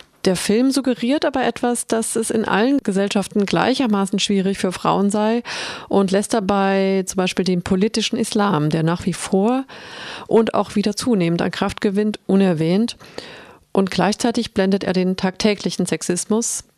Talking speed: 150 wpm